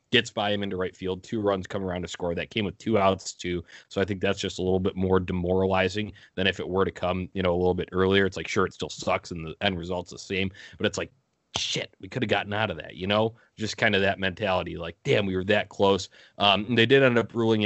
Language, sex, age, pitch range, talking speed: English, male, 20-39, 90-105 Hz, 280 wpm